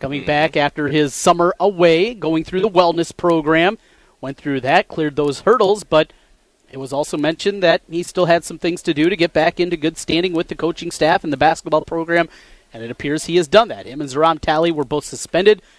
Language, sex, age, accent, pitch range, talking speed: English, male, 30-49, American, 150-185 Hz, 220 wpm